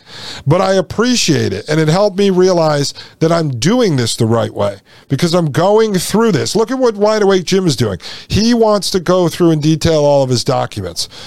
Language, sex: English, male